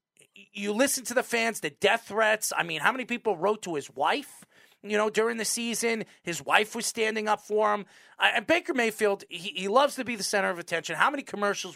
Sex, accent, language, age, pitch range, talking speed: male, American, English, 40-59, 190-245 Hz, 230 wpm